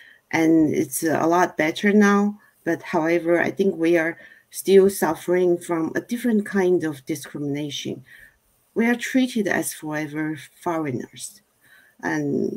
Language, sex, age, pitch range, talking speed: English, female, 50-69, 155-185 Hz, 130 wpm